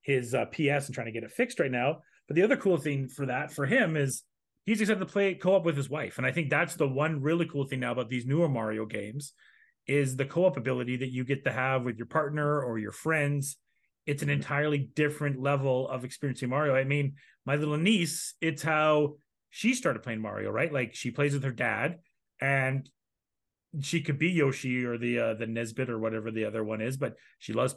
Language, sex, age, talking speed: English, male, 30-49, 225 wpm